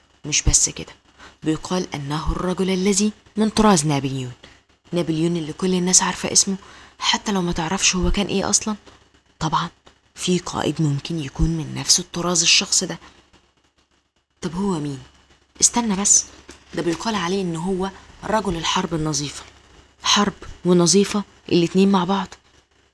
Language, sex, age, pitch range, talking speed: Arabic, female, 20-39, 150-190 Hz, 135 wpm